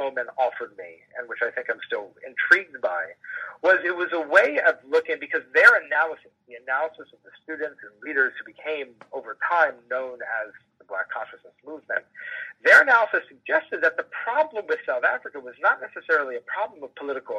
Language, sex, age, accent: English, male, 40-59, American